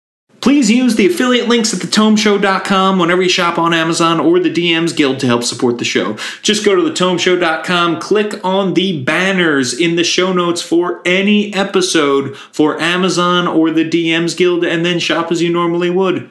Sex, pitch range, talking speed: male, 145-190 Hz, 180 wpm